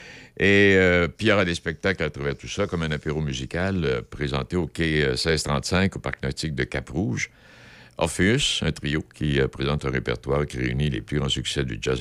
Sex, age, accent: male, 60-79, French